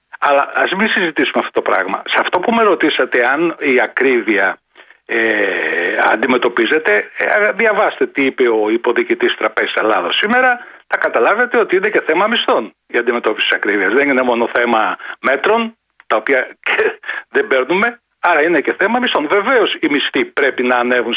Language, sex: Greek, male